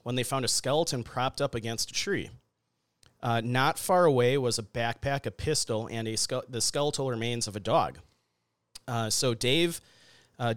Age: 30-49